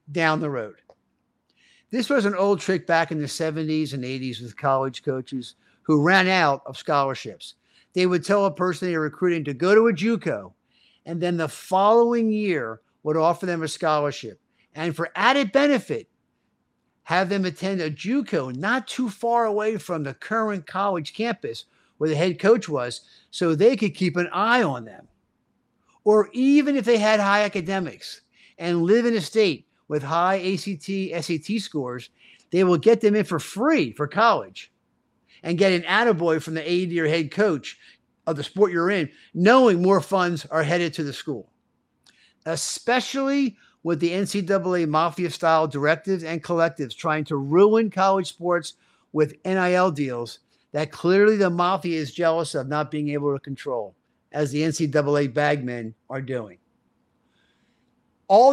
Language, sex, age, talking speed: English, male, 50-69, 165 wpm